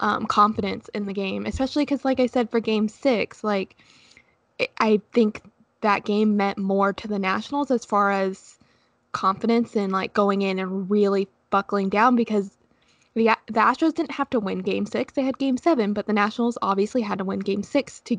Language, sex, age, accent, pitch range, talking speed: English, female, 10-29, American, 200-250 Hz, 195 wpm